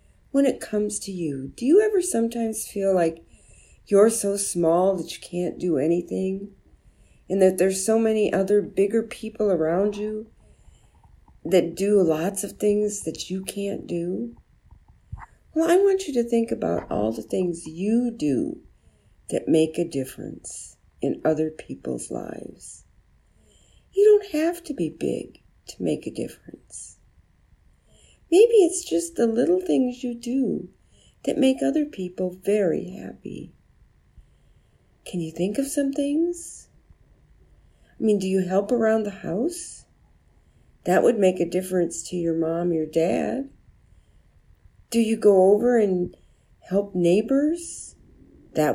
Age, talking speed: 50-69, 140 wpm